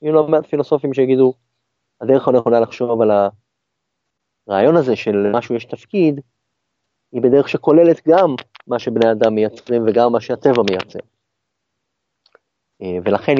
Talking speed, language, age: 125 wpm, Hebrew, 30-49